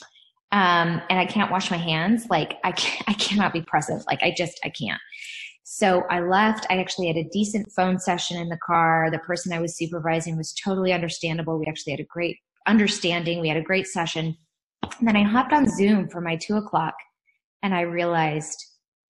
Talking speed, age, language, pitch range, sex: 200 wpm, 20-39, English, 170-210 Hz, female